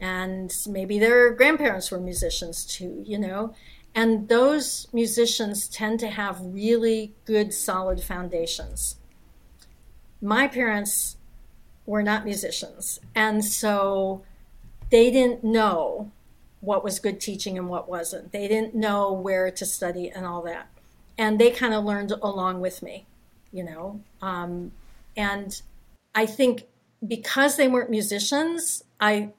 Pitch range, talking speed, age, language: 185-220 Hz, 130 wpm, 50-69, English